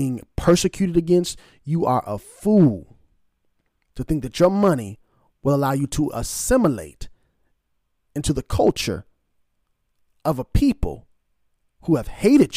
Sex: male